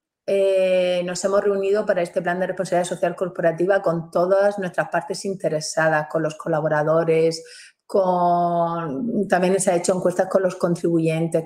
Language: Spanish